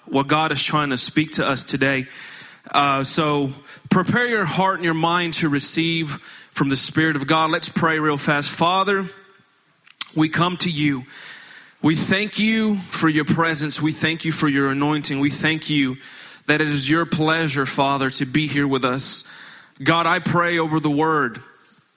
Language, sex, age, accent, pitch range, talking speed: English, male, 30-49, American, 145-165 Hz, 180 wpm